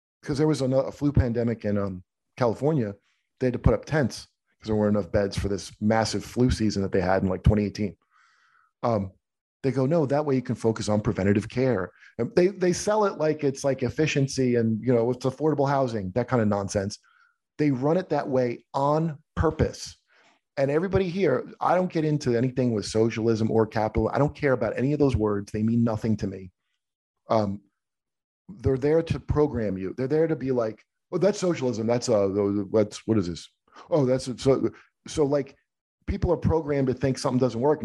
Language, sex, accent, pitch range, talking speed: English, male, American, 110-140 Hz, 205 wpm